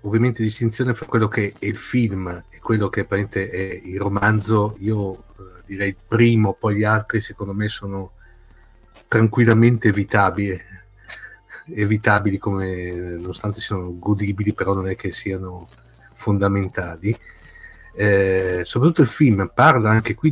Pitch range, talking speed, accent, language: 100-120 Hz, 130 wpm, native, Italian